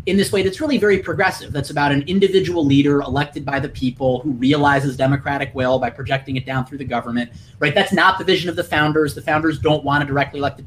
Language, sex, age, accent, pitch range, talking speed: English, male, 30-49, American, 130-190 Hz, 235 wpm